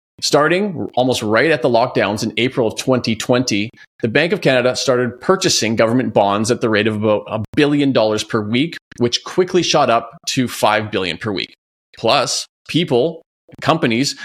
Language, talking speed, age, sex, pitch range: English, 170 wpm, 30-49, male, 115-150 Hz